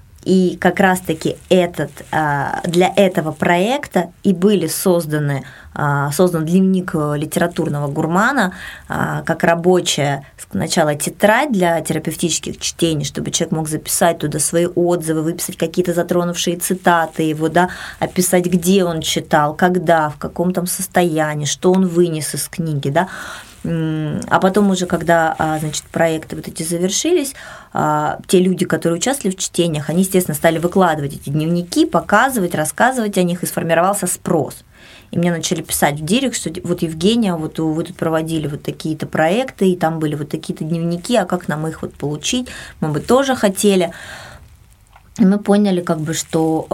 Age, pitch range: 20-39, 160-185 Hz